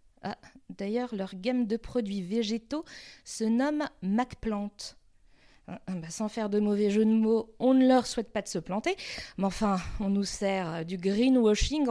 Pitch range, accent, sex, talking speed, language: 205-255 Hz, French, female, 170 wpm, French